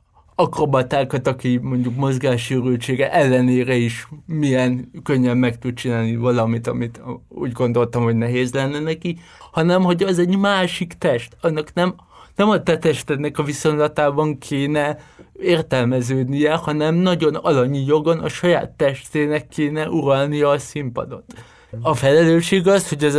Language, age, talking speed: Hungarian, 20-39, 135 wpm